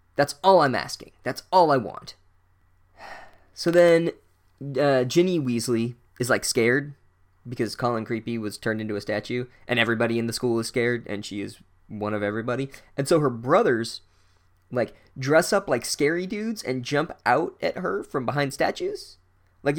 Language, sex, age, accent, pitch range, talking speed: English, male, 20-39, American, 105-145 Hz, 170 wpm